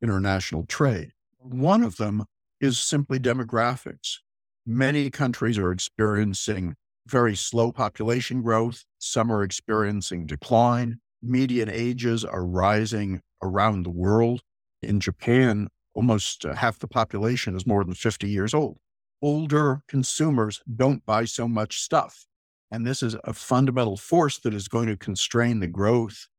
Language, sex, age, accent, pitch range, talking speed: English, male, 60-79, American, 100-125 Hz, 135 wpm